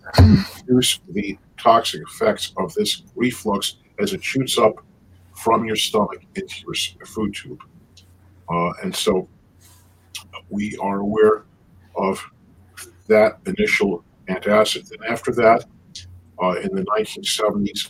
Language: English